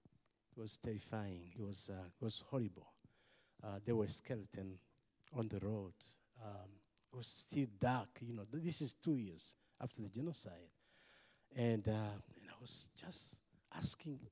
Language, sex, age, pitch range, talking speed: English, male, 50-69, 110-140 Hz, 150 wpm